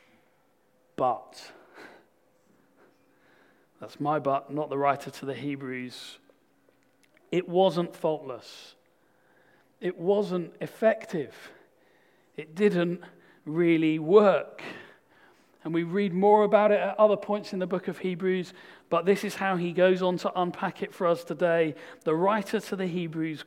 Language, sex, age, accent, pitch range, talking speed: English, male, 40-59, British, 145-185 Hz, 135 wpm